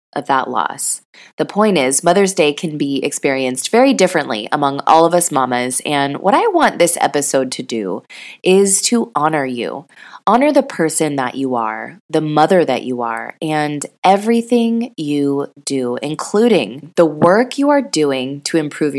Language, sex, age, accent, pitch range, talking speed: English, female, 20-39, American, 140-195 Hz, 170 wpm